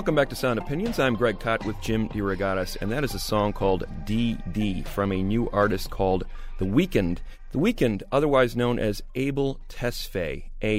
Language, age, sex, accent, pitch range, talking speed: English, 30-49, male, American, 105-140 Hz, 185 wpm